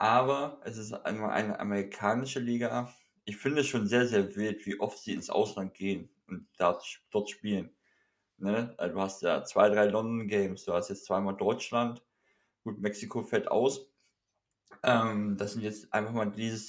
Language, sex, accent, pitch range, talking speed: German, male, German, 105-140 Hz, 160 wpm